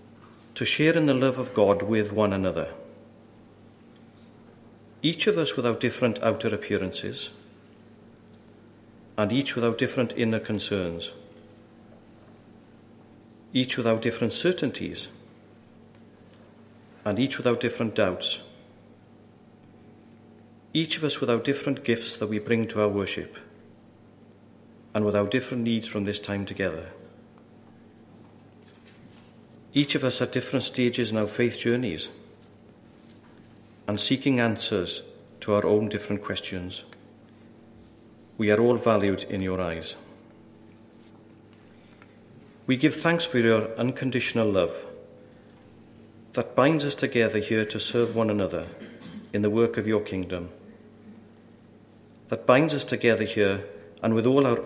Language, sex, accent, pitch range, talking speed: English, male, British, 105-120 Hz, 125 wpm